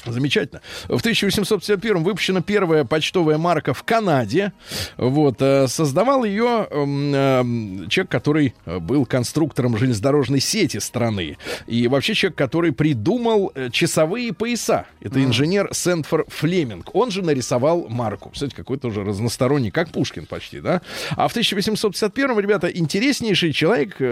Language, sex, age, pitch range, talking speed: Russian, male, 20-39, 120-180 Hz, 120 wpm